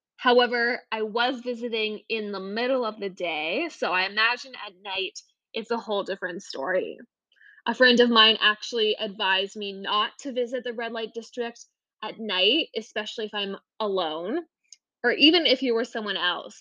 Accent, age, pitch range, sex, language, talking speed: American, 10-29, 210-260 Hz, female, English, 170 wpm